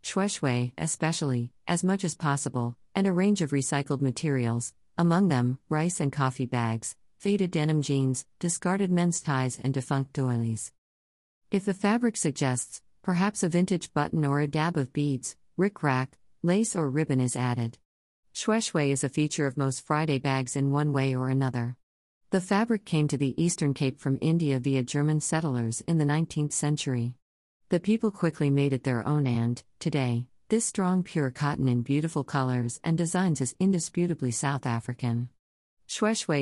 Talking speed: 160 wpm